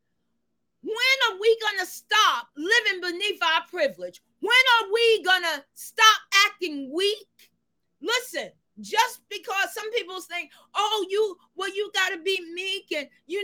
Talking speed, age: 150 wpm, 40-59